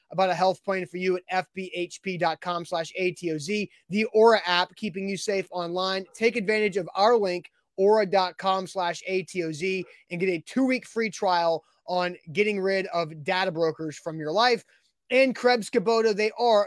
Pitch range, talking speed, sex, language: 175-210 Hz, 160 wpm, male, English